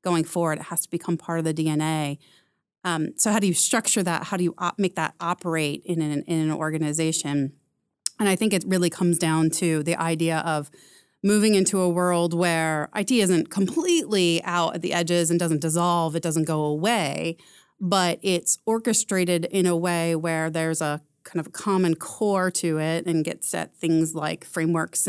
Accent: American